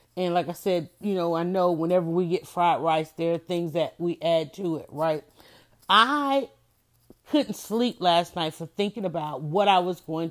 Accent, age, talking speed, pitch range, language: American, 40-59, 200 wpm, 165-210 Hz, English